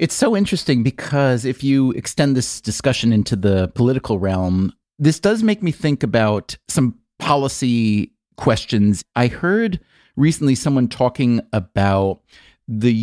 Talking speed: 135 wpm